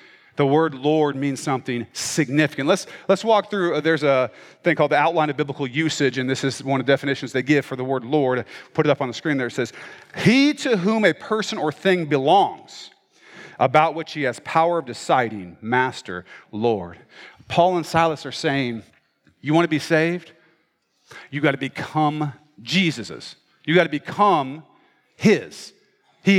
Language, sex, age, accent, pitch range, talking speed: English, male, 40-59, American, 155-220 Hz, 180 wpm